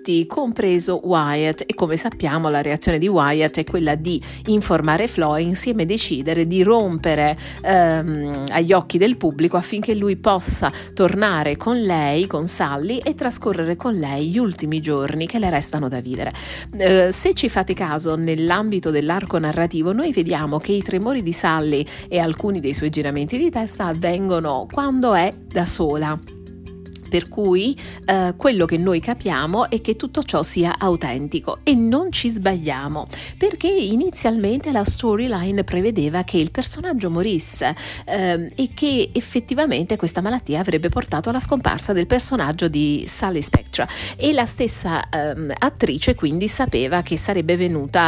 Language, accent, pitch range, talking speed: Italian, native, 155-210 Hz, 150 wpm